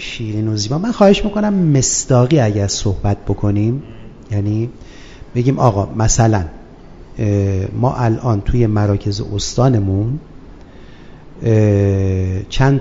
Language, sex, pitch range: Persian, male, 105-145 Hz